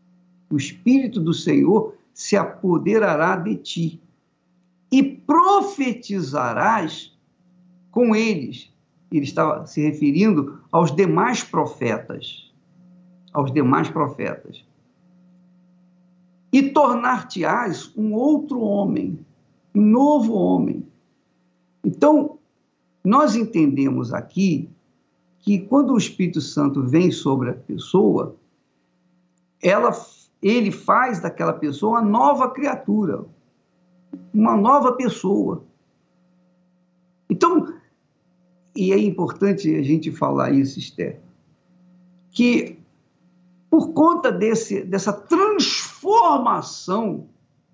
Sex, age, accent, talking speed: male, 50-69, Brazilian, 85 wpm